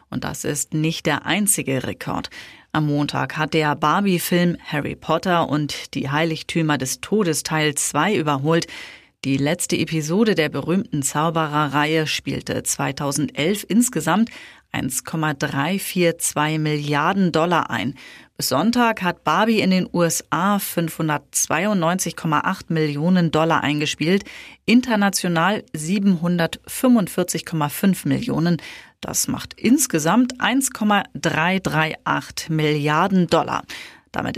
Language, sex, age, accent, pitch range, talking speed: German, female, 30-49, German, 150-195 Hz, 100 wpm